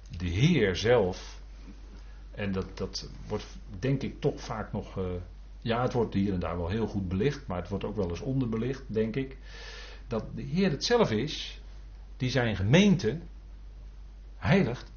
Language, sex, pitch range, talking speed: Dutch, male, 90-155 Hz, 170 wpm